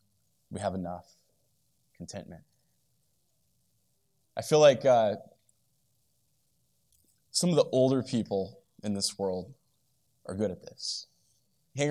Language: English